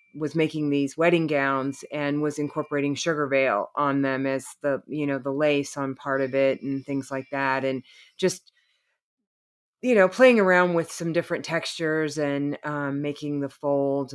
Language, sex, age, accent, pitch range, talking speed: English, female, 30-49, American, 145-180 Hz, 175 wpm